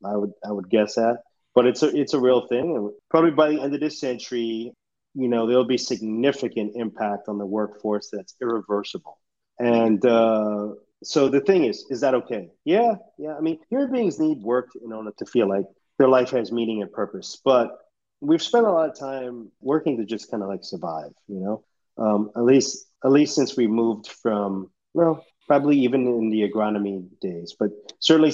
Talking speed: 205 wpm